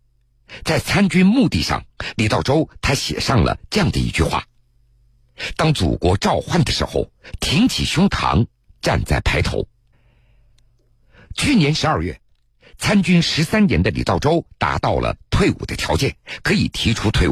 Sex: male